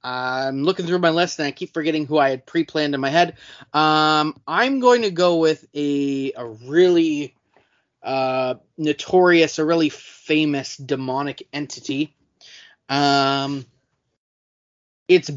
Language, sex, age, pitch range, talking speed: English, male, 20-39, 140-170 Hz, 135 wpm